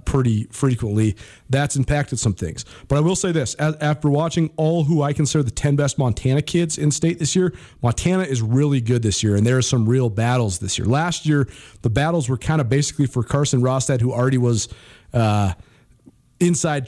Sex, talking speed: male, 205 wpm